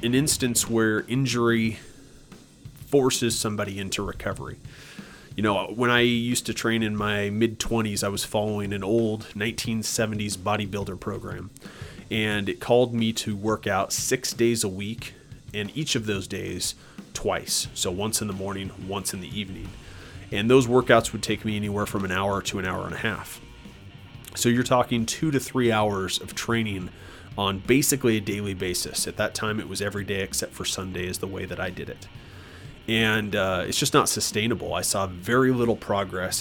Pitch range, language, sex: 100-120 Hz, English, male